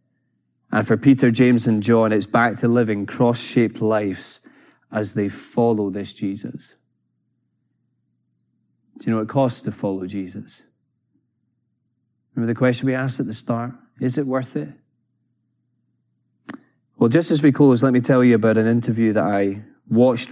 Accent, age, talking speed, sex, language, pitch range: British, 30-49, 155 wpm, male, English, 110-130 Hz